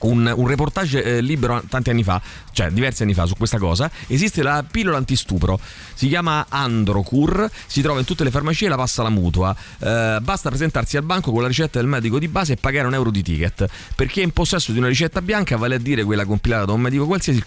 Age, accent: 30-49, native